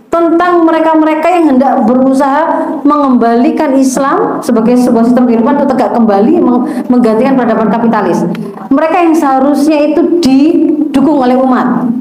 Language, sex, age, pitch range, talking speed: Indonesian, female, 30-49, 235-290 Hz, 120 wpm